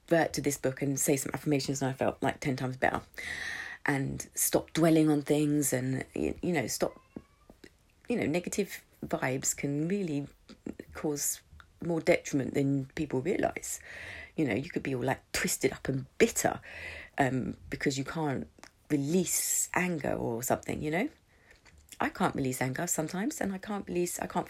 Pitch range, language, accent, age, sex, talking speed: 135-185 Hz, English, British, 30-49, female, 165 wpm